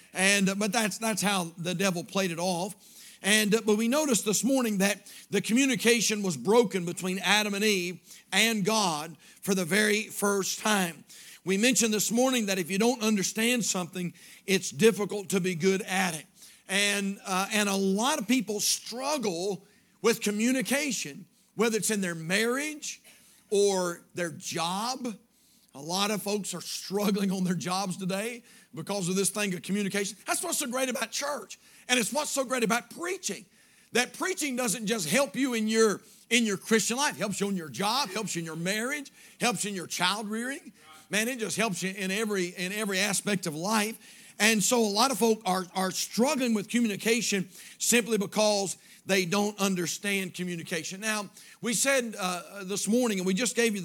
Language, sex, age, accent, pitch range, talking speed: English, male, 50-69, American, 190-230 Hz, 185 wpm